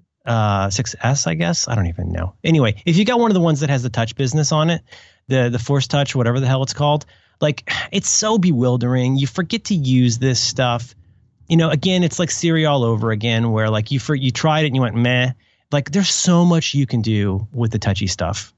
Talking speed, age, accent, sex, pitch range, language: 235 wpm, 30-49, American, male, 110-155 Hz, English